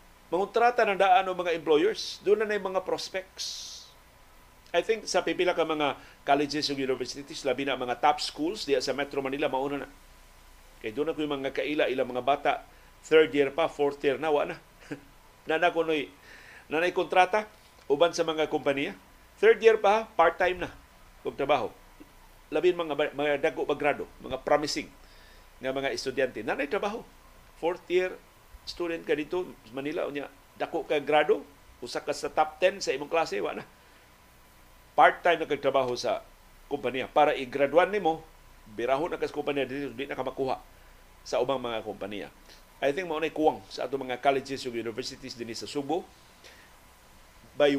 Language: Filipino